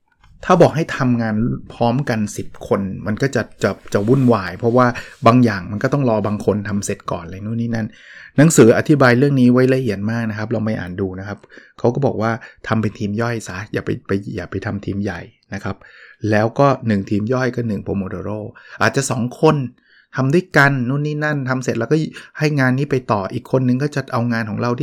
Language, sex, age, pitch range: Thai, male, 20-39, 110-145 Hz